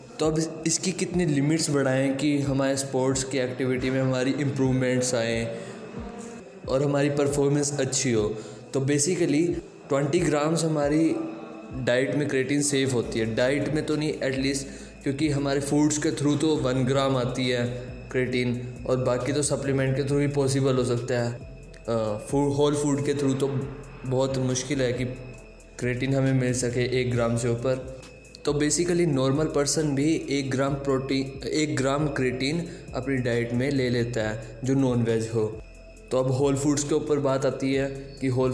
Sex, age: male, 20-39